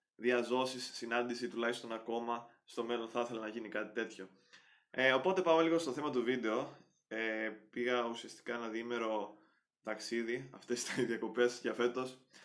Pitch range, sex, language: 115-130 Hz, male, Greek